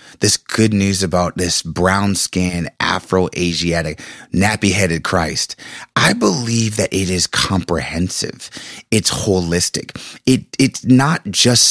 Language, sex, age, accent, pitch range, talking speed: English, male, 30-49, American, 95-130 Hz, 110 wpm